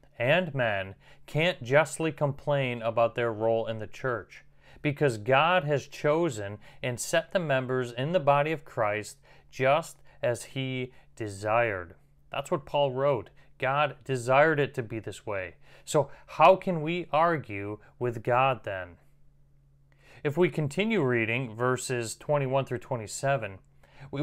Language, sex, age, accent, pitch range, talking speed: English, male, 30-49, American, 120-145 Hz, 140 wpm